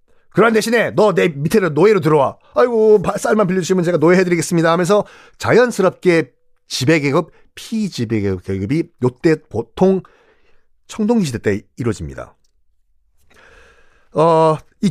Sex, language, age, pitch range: male, Korean, 40-59, 130-215 Hz